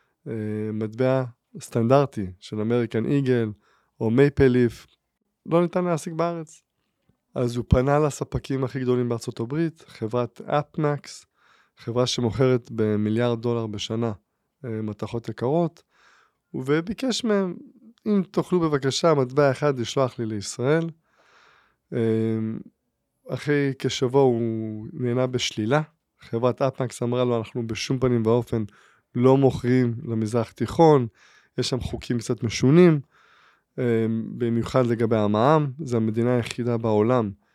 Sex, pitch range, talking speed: male, 115-145 Hz, 110 wpm